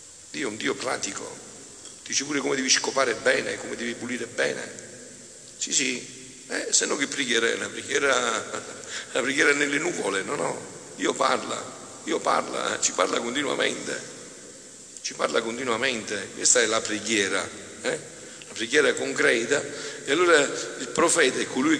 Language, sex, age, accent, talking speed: Italian, male, 50-69, native, 145 wpm